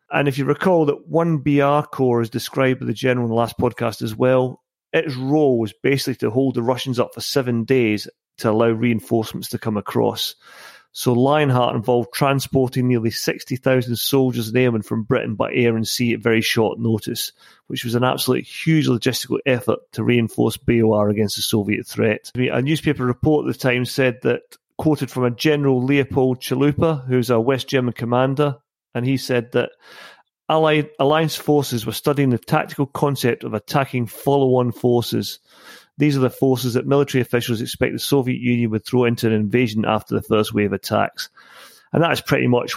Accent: British